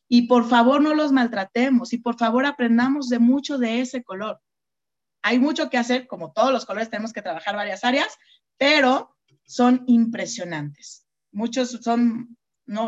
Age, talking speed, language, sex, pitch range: 30-49, 160 wpm, Spanish, female, 210-255 Hz